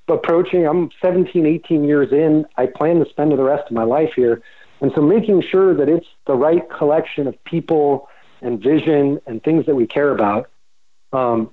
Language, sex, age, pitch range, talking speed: English, male, 40-59, 140-180 Hz, 185 wpm